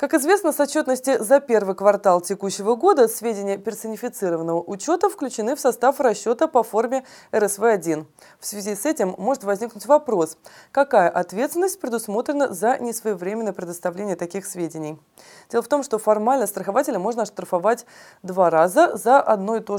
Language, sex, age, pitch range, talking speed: Russian, female, 20-39, 185-255 Hz, 145 wpm